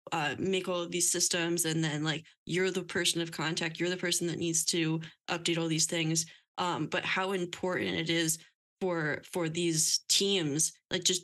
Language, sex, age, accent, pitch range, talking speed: English, female, 10-29, American, 165-185 Hz, 190 wpm